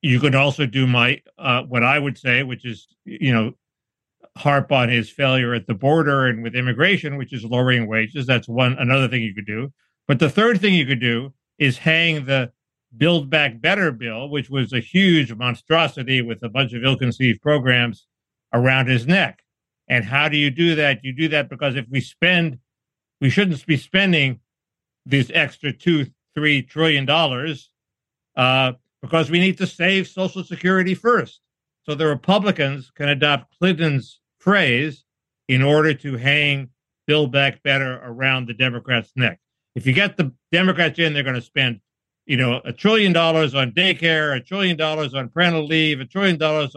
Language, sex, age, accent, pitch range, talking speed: English, male, 60-79, American, 125-160 Hz, 175 wpm